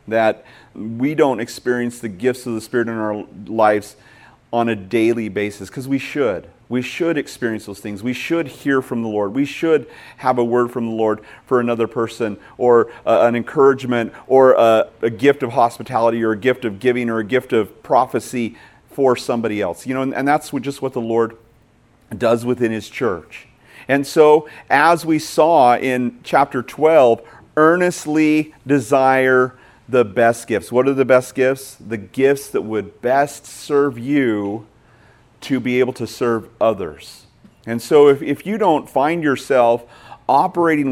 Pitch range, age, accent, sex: 115-135 Hz, 40-59, American, male